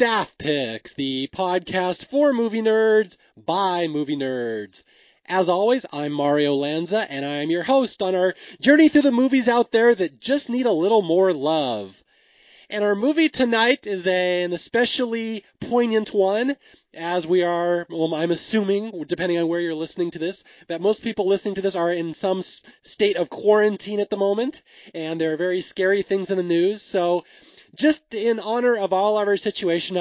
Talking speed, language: 175 wpm, English